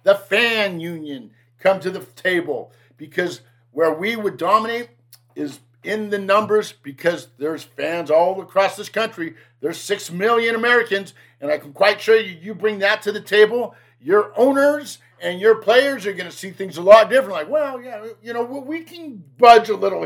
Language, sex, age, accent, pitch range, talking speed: English, male, 50-69, American, 145-215 Hz, 185 wpm